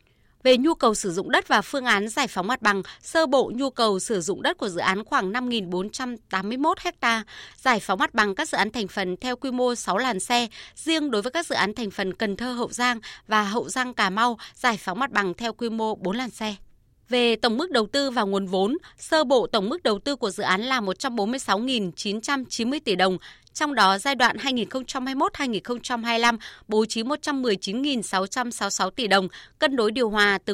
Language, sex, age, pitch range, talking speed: Vietnamese, female, 20-39, 205-270 Hz, 200 wpm